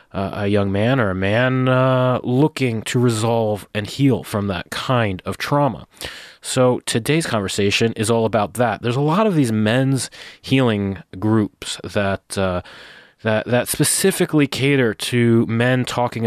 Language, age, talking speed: English, 30-49, 155 wpm